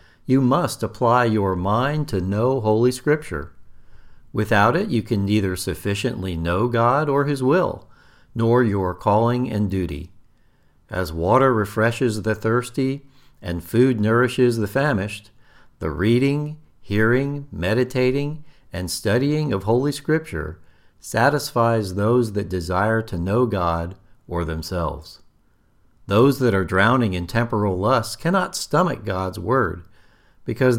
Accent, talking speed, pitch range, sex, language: American, 125 wpm, 95-130 Hz, male, English